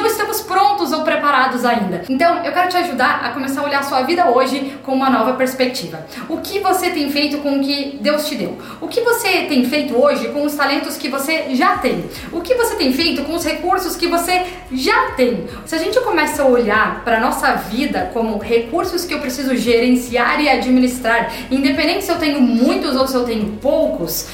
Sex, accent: female, Brazilian